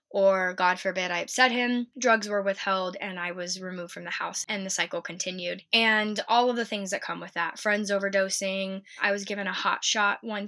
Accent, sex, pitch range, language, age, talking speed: American, female, 185-200 Hz, English, 10-29, 220 wpm